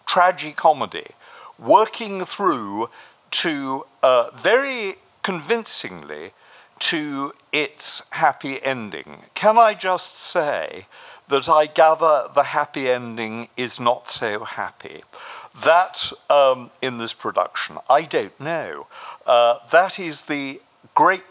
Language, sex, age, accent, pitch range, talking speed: English, male, 60-79, British, 120-180 Hz, 110 wpm